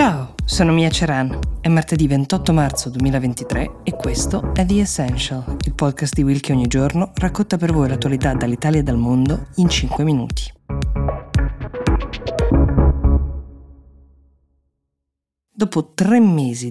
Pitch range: 130-160 Hz